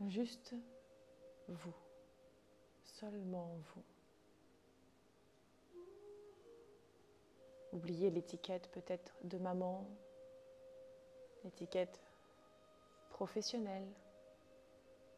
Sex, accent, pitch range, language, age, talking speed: female, French, 165-245 Hz, French, 30-49, 45 wpm